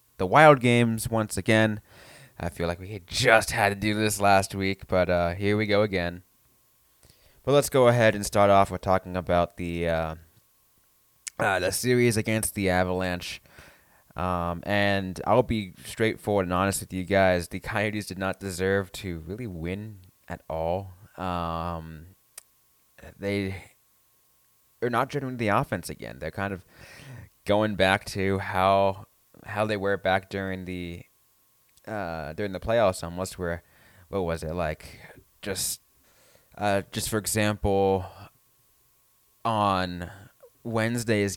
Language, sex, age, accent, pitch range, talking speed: English, male, 20-39, American, 90-110 Hz, 140 wpm